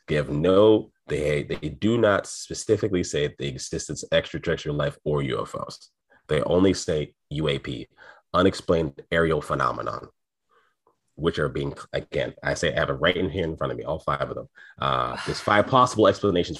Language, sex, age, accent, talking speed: English, male, 30-49, American, 175 wpm